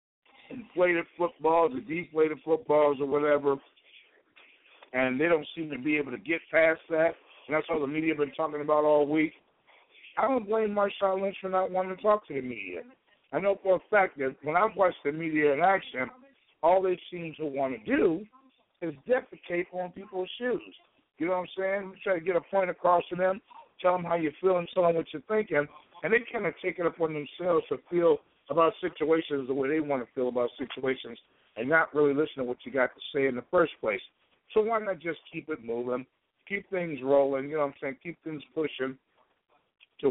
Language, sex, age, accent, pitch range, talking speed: English, male, 60-79, American, 140-180 Hz, 215 wpm